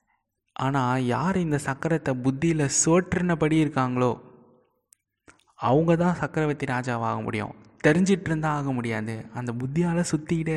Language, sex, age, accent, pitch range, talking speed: Tamil, male, 20-39, native, 120-150 Hz, 100 wpm